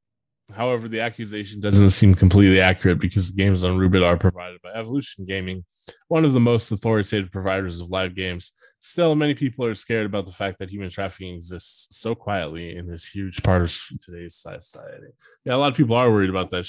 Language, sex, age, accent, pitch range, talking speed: English, male, 20-39, American, 95-130 Hz, 200 wpm